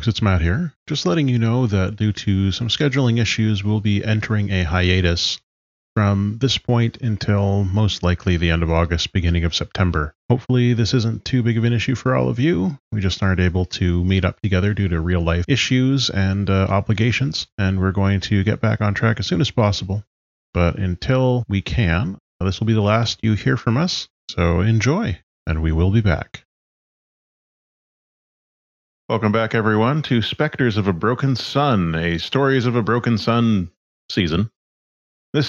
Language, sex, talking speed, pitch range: English, male, 185 wpm, 90-120 Hz